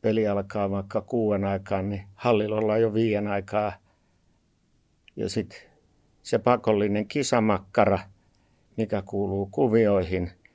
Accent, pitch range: native, 95-110 Hz